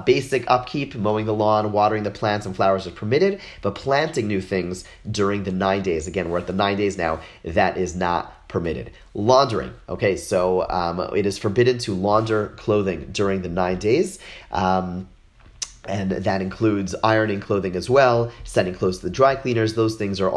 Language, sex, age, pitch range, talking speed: English, male, 30-49, 95-115 Hz, 185 wpm